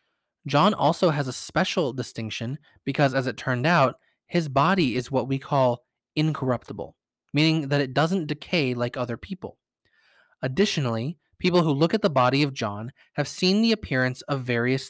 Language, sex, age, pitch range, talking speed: English, male, 20-39, 125-160 Hz, 165 wpm